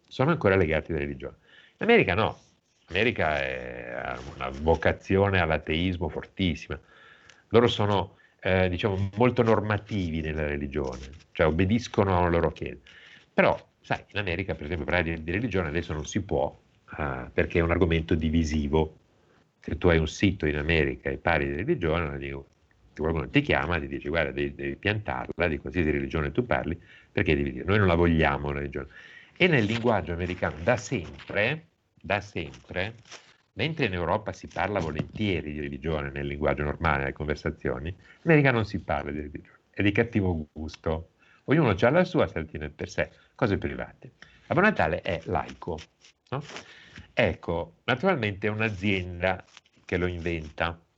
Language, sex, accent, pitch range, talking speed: Italian, male, native, 75-95 Hz, 160 wpm